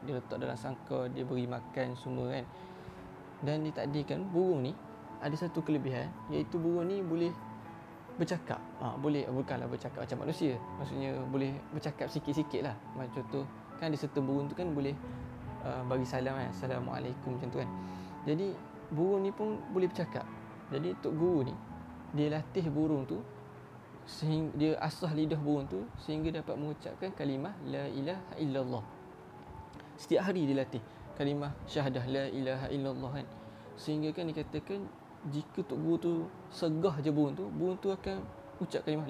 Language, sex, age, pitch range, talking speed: Malay, male, 20-39, 125-160 Hz, 150 wpm